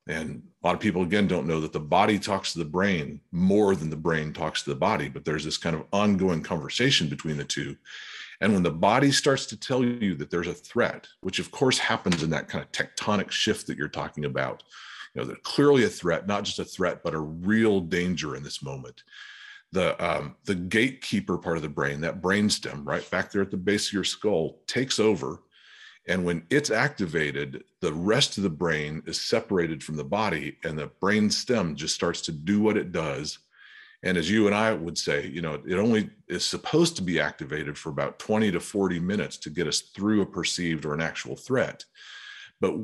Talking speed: 215 wpm